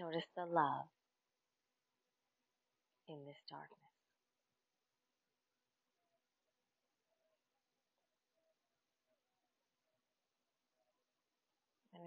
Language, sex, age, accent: English, female, 30-49, American